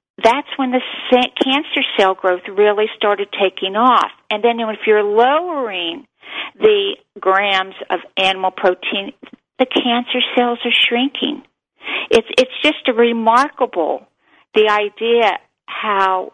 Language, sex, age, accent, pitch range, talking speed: English, female, 50-69, American, 190-265 Hz, 115 wpm